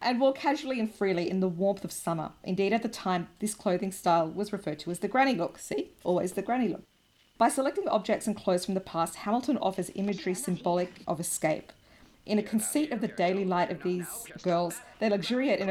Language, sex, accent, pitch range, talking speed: English, female, Australian, 170-205 Hz, 215 wpm